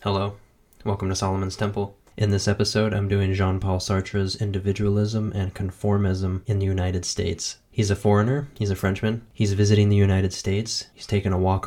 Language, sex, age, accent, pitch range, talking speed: English, male, 20-39, American, 95-105 Hz, 175 wpm